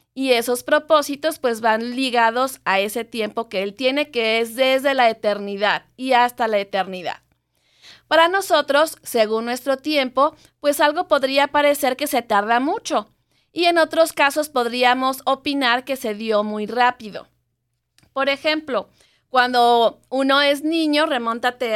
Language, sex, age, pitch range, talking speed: Spanish, female, 30-49, 225-280 Hz, 145 wpm